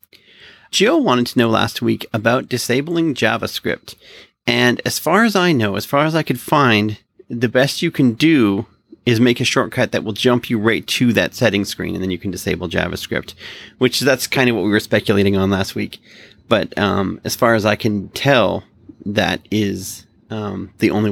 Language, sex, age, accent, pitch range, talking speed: English, male, 30-49, American, 105-125 Hz, 195 wpm